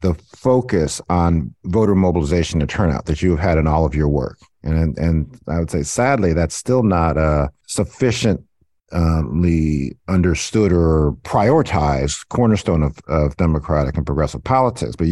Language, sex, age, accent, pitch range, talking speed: English, male, 50-69, American, 80-115 Hz, 150 wpm